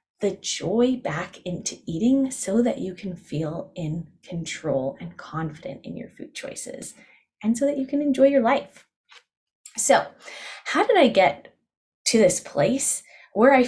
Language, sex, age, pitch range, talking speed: English, female, 20-39, 180-275 Hz, 160 wpm